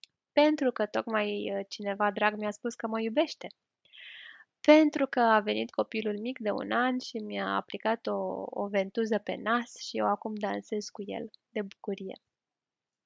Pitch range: 205-250 Hz